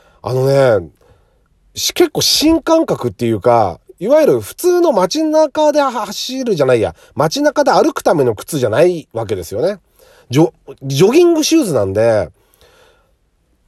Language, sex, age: Japanese, male, 40-59